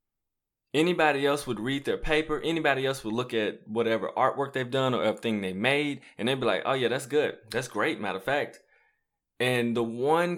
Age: 20-39